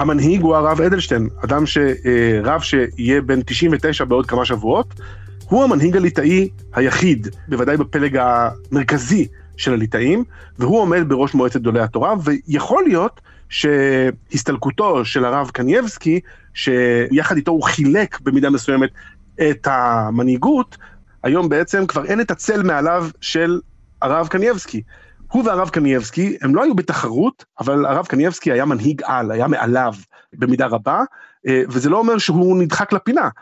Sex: male